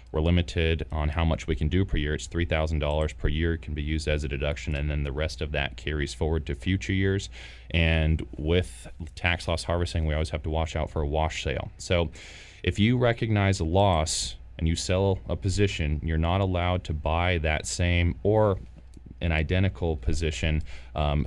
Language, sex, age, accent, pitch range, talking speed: English, male, 30-49, American, 75-90 Hz, 200 wpm